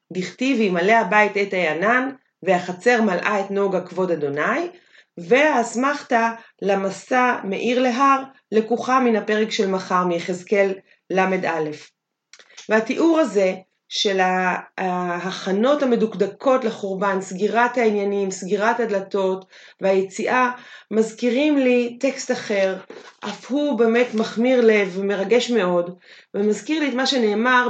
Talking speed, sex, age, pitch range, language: 105 wpm, female, 30-49, 195-245 Hz, Hebrew